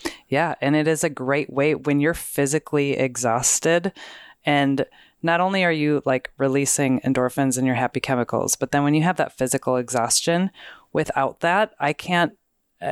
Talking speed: 165 wpm